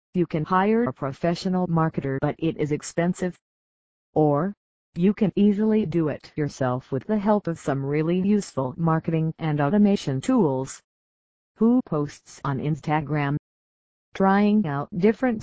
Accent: American